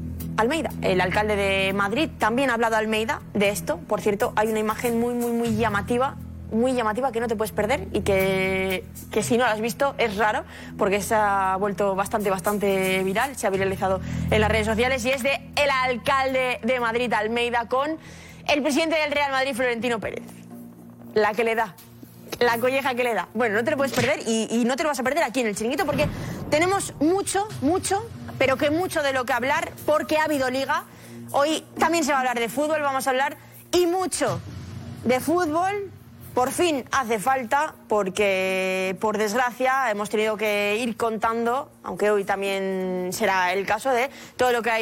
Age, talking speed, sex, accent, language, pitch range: 20-39, 200 wpm, female, Spanish, Spanish, 200-270 Hz